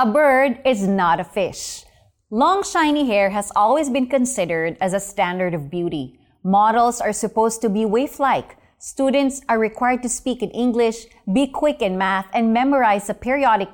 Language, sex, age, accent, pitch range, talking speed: Filipino, female, 20-39, native, 215-315 Hz, 170 wpm